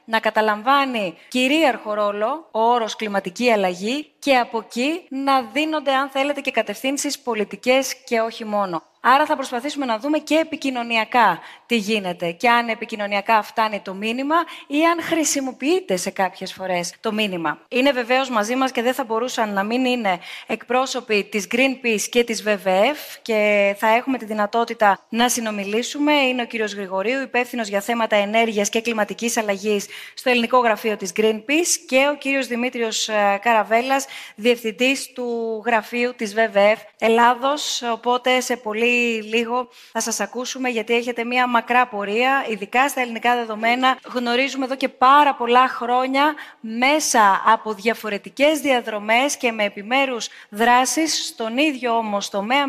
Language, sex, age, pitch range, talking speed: Greek, female, 20-39, 215-260 Hz, 145 wpm